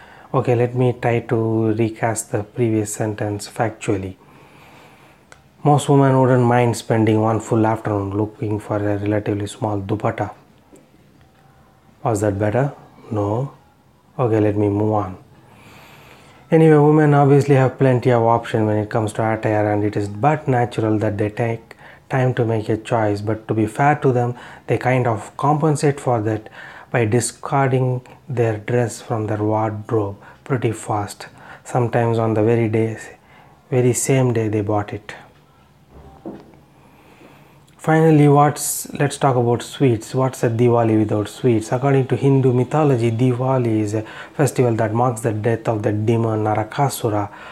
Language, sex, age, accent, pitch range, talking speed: English, male, 30-49, Indian, 110-130 Hz, 150 wpm